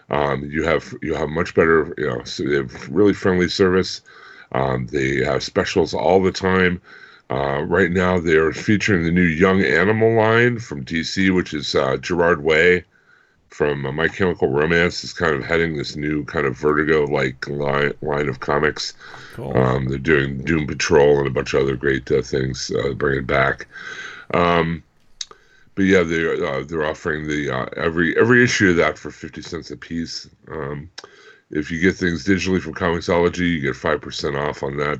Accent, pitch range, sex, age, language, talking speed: American, 70-90 Hz, female, 50-69, English, 185 wpm